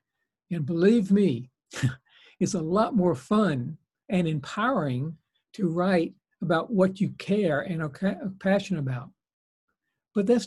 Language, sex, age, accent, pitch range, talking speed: English, male, 60-79, American, 160-205 Hz, 125 wpm